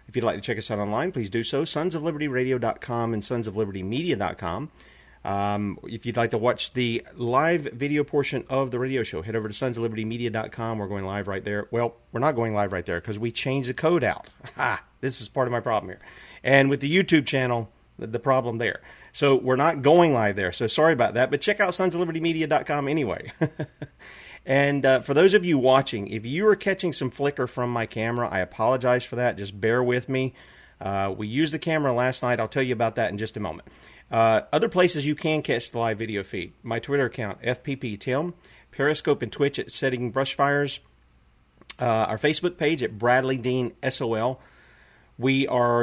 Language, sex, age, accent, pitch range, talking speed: English, male, 40-59, American, 115-145 Hz, 195 wpm